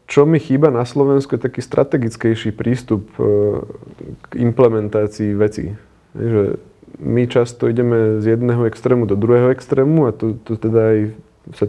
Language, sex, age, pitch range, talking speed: Slovak, male, 30-49, 110-125 Hz, 135 wpm